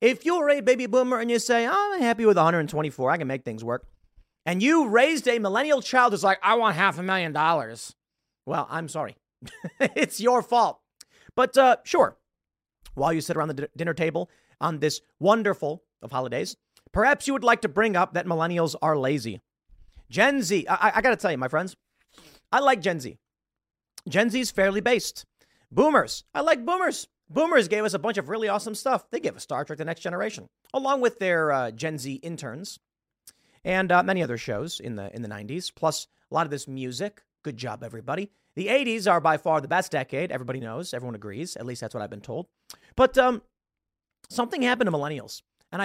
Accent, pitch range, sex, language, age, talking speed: American, 140-225 Hz, male, English, 30-49, 200 wpm